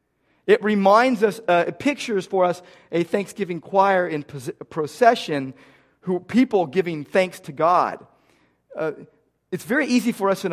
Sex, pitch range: male, 150-205 Hz